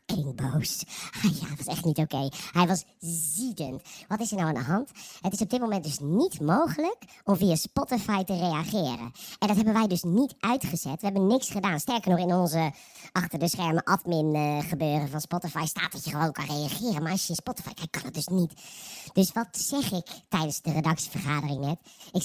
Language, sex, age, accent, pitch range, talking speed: Dutch, male, 50-69, Dutch, 170-255 Hz, 220 wpm